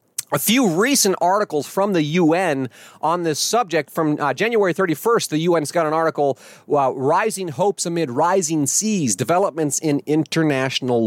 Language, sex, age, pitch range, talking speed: English, male, 30-49, 140-190 Hz, 155 wpm